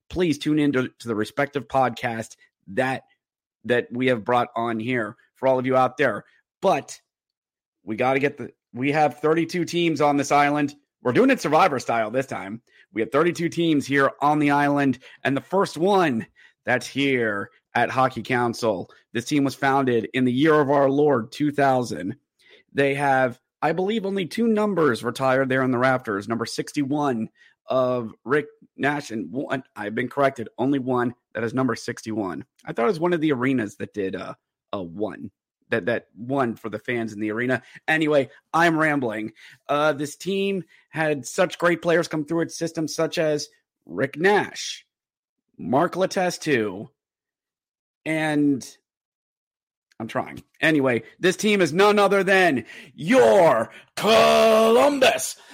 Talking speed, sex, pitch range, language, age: 160 wpm, male, 125-165 Hz, English, 30-49